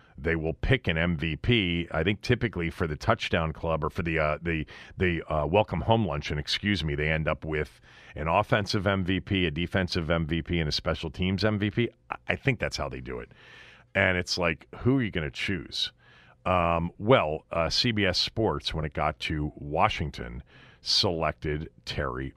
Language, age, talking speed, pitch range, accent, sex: English, 40-59, 180 wpm, 75-95 Hz, American, male